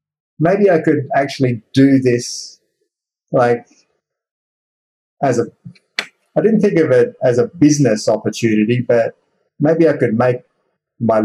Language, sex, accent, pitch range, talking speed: English, male, Australian, 110-135 Hz, 115 wpm